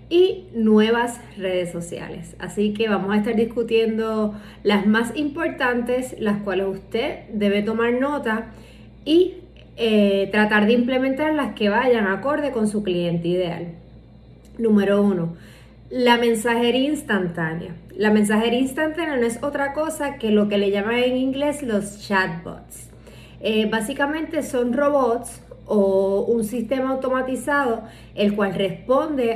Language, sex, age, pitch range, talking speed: Spanish, female, 30-49, 200-255 Hz, 130 wpm